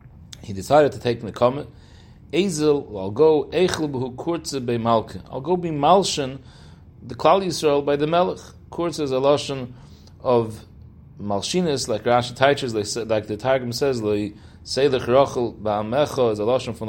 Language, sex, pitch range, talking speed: English, male, 110-150 Hz, 125 wpm